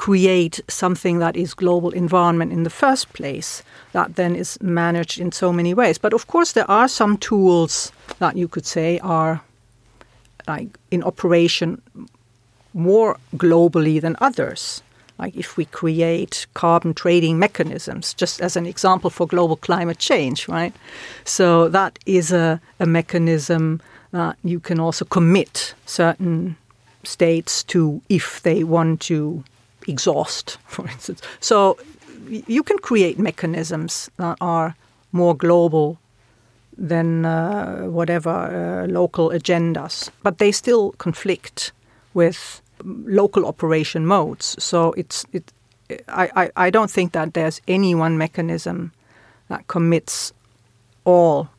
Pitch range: 160-180 Hz